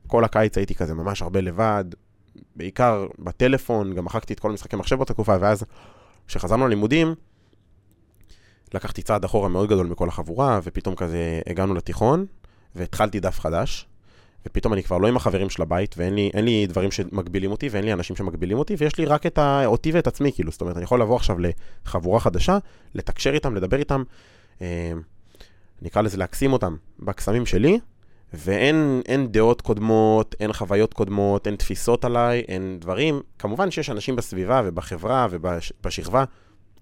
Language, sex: Hebrew, male